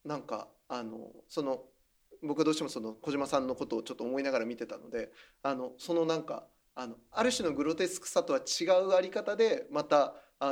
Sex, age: male, 20-39